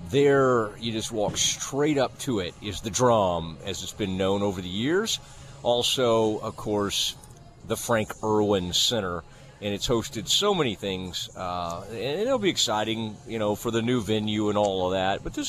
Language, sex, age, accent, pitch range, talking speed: English, male, 40-59, American, 100-135 Hz, 185 wpm